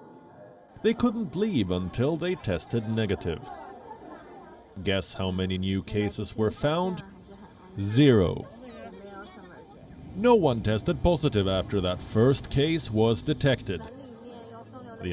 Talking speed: 105 wpm